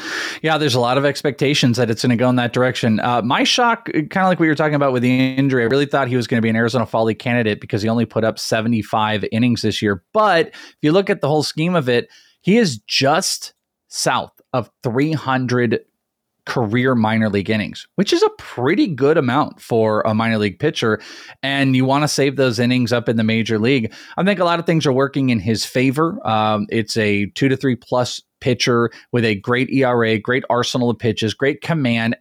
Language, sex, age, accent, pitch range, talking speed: English, male, 20-39, American, 110-140 Hz, 225 wpm